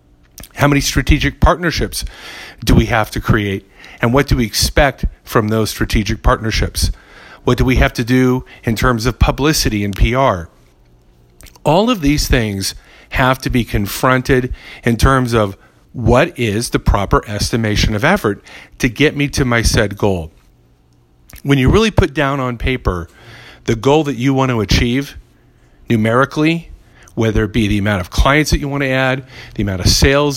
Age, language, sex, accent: 50-69, English, male, American